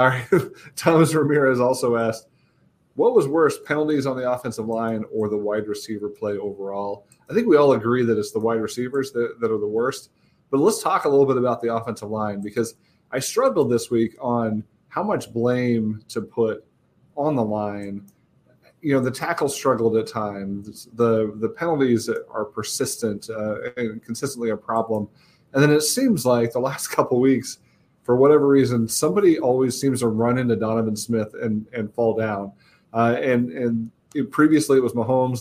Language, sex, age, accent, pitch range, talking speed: English, male, 30-49, American, 110-130 Hz, 180 wpm